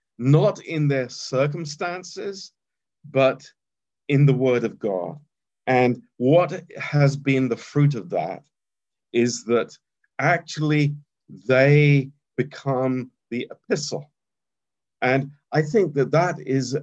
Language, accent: Romanian, British